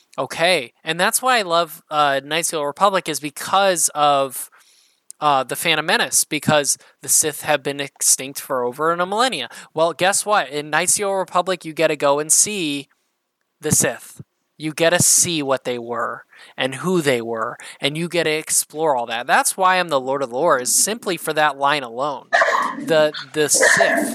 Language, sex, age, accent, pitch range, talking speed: English, male, 20-39, American, 140-180 Hz, 190 wpm